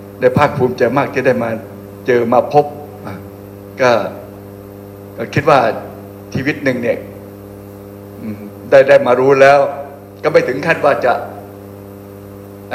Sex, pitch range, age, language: male, 100-140 Hz, 60-79, Thai